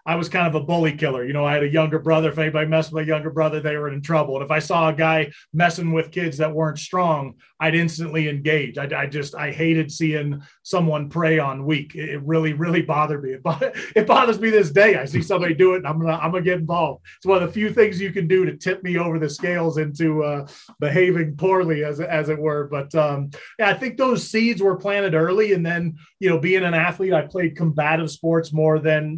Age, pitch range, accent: 30-49, 155-175 Hz, American